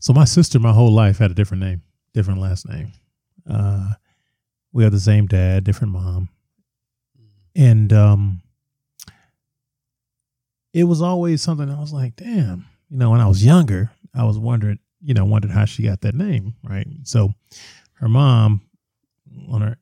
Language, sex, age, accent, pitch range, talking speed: English, male, 30-49, American, 100-125 Hz, 165 wpm